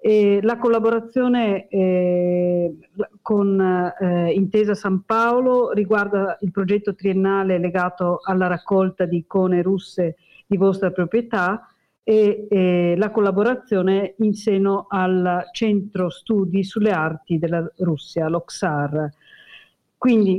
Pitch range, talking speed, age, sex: 175-205 Hz, 105 wpm, 50-69, female